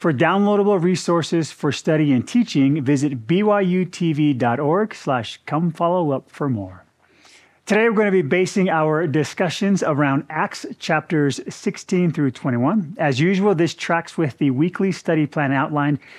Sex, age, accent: male, 30-49, American